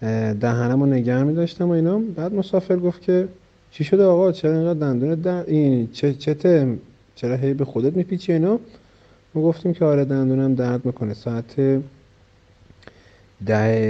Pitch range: 115-150 Hz